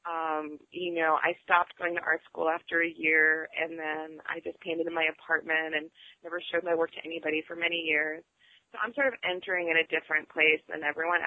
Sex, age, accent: female, 30-49, American